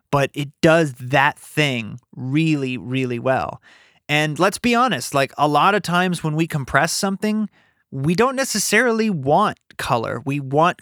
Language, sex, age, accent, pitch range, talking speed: English, male, 30-49, American, 125-170 Hz, 155 wpm